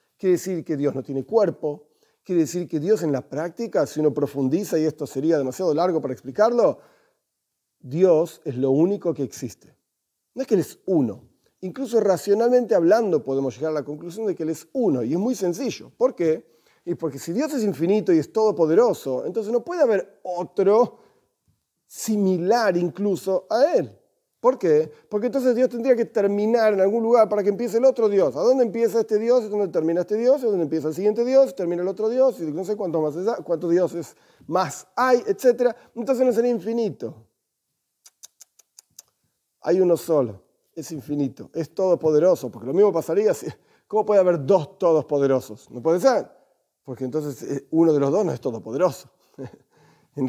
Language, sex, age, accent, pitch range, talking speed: Spanish, male, 40-59, Argentinian, 150-225 Hz, 180 wpm